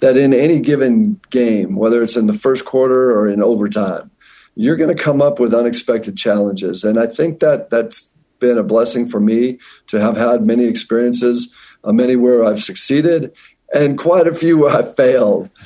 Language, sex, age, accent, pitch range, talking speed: English, male, 40-59, American, 120-150 Hz, 185 wpm